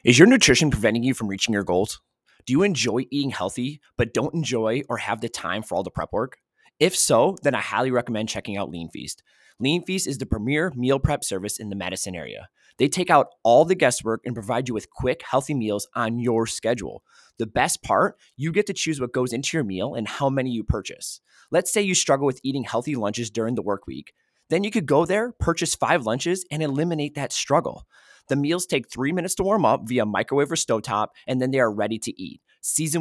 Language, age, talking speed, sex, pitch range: English, 20-39, 225 wpm, male, 105-140 Hz